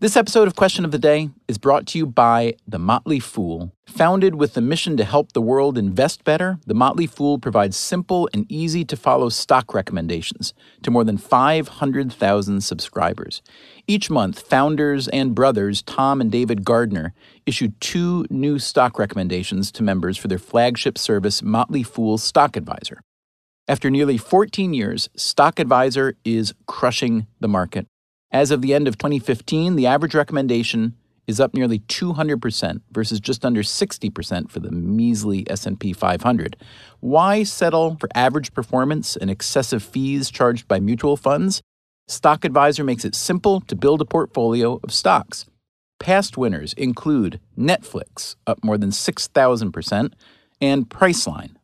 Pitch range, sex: 110-150 Hz, male